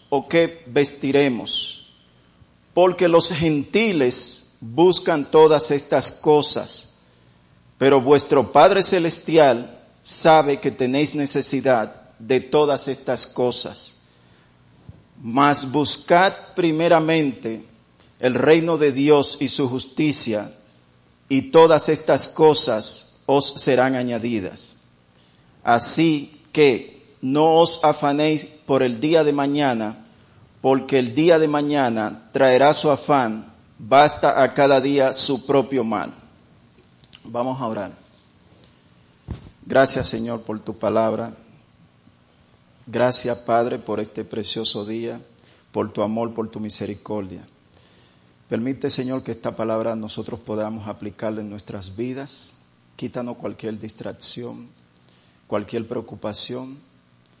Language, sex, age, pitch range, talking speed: English, male, 50-69, 105-145 Hz, 105 wpm